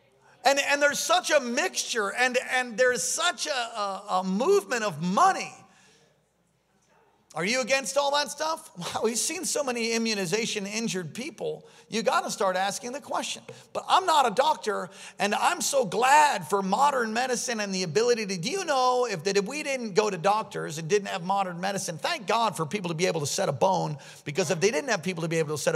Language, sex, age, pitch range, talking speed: English, male, 40-59, 150-235 Hz, 210 wpm